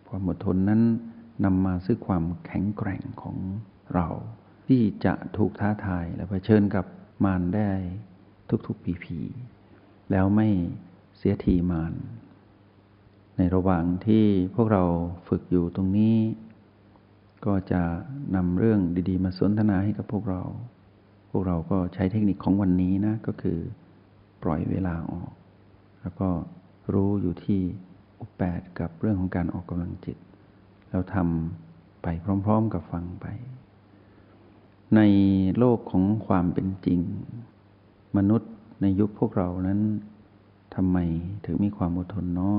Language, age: Thai, 60-79